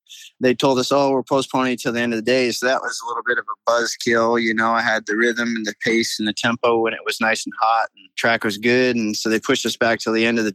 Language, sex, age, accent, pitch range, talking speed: English, male, 20-39, American, 110-130 Hz, 305 wpm